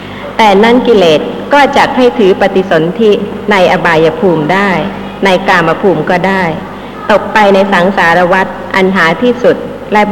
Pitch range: 190-245 Hz